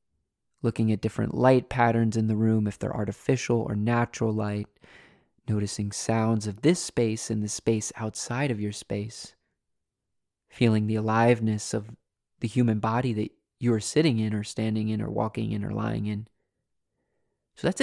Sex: male